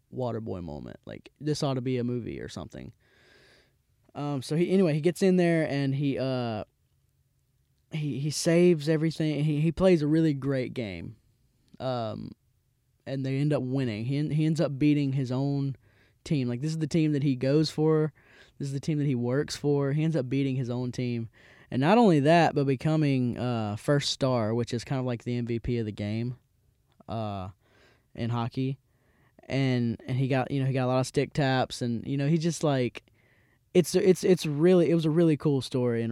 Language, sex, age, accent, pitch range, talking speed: English, male, 10-29, American, 115-145 Hz, 205 wpm